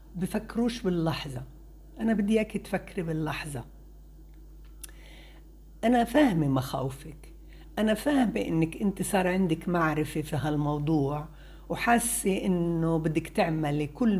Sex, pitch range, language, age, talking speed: female, 160-255 Hz, Arabic, 60-79, 95 wpm